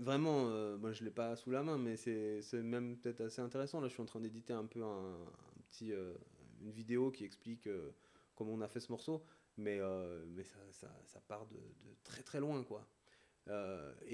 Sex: male